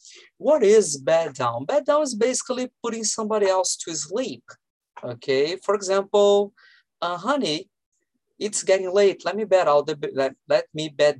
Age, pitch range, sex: 20-39, 145-215 Hz, male